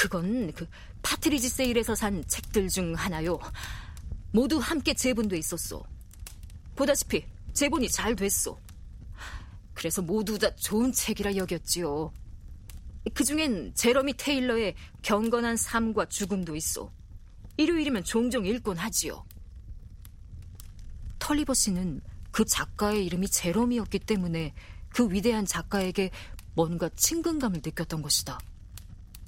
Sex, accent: female, native